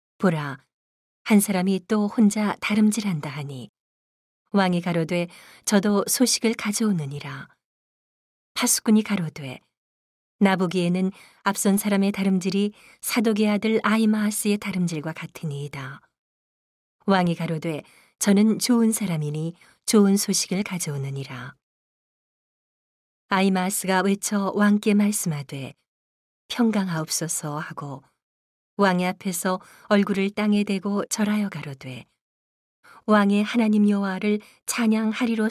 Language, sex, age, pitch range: Korean, female, 40-59, 155-210 Hz